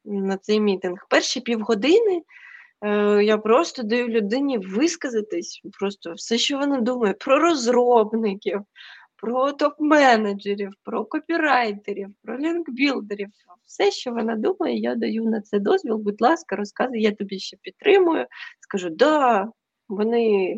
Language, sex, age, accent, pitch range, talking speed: Ukrainian, female, 20-39, native, 195-255 Hz, 125 wpm